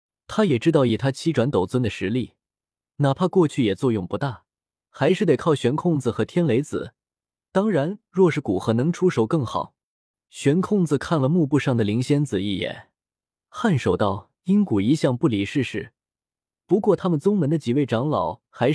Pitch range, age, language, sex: 115-165 Hz, 20-39, Chinese, male